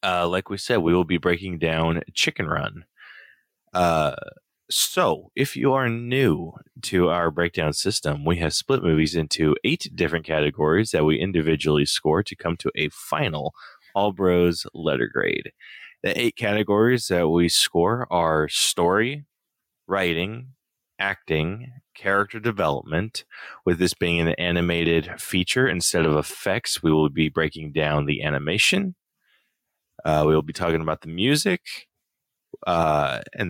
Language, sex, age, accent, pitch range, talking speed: English, male, 20-39, American, 80-100 Hz, 145 wpm